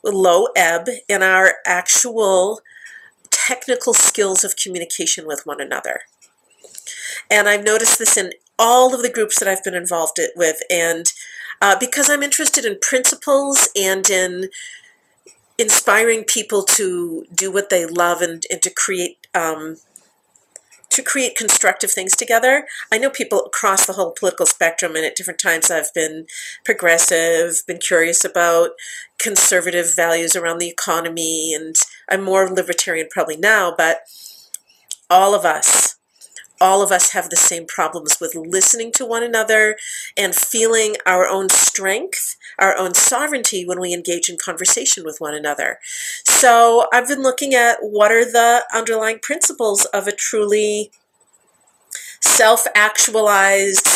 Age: 50-69